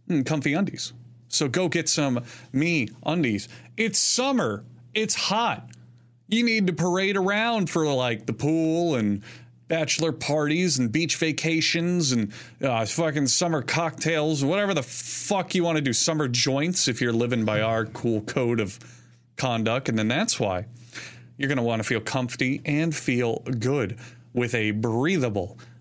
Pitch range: 115-155 Hz